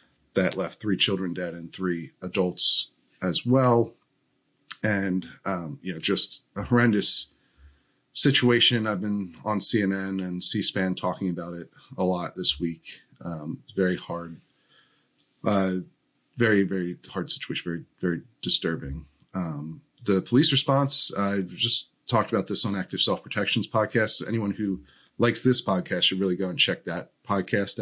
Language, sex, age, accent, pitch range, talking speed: English, male, 30-49, American, 85-105 Hz, 145 wpm